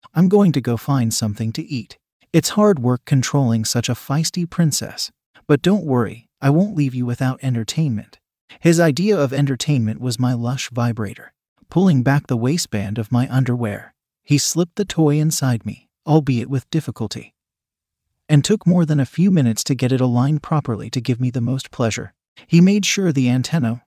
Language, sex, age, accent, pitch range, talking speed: English, male, 40-59, American, 120-155 Hz, 180 wpm